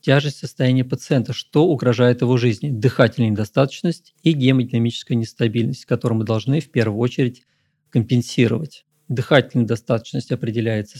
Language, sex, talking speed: Russian, male, 120 wpm